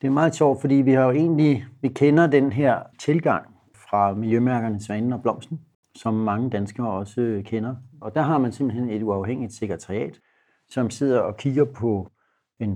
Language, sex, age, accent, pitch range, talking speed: Danish, male, 60-79, native, 110-135 Hz, 180 wpm